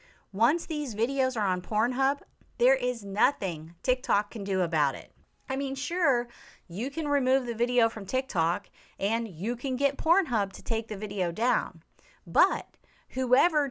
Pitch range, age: 185-275 Hz, 30-49